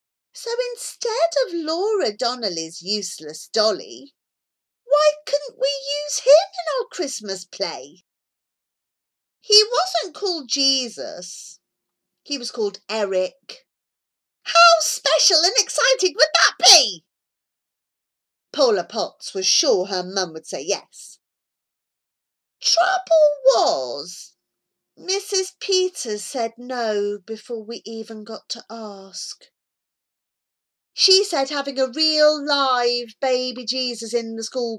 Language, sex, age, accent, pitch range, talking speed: English, female, 40-59, British, 200-320 Hz, 110 wpm